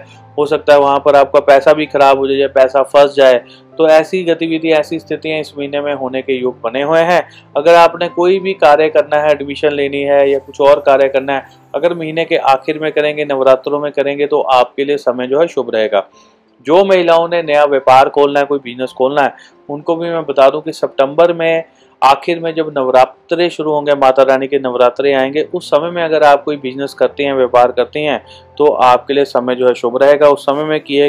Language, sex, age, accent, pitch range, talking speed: Hindi, male, 30-49, native, 135-155 Hz, 220 wpm